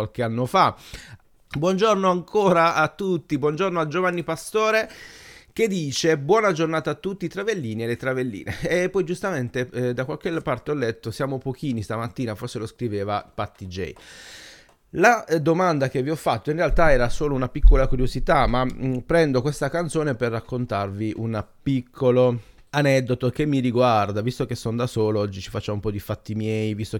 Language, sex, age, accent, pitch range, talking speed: Italian, male, 30-49, native, 105-150 Hz, 175 wpm